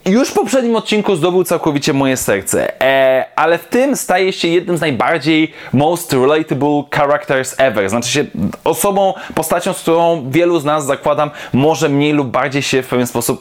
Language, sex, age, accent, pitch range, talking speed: Polish, male, 20-39, native, 130-180 Hz, 175 wpm